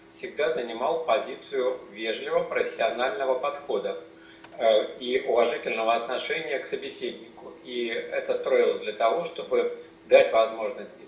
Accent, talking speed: native, 105 wpm